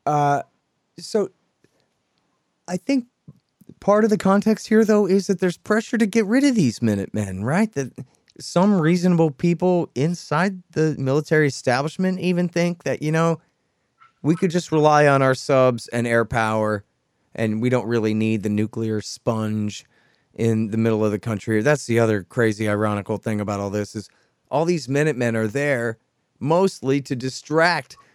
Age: 30-49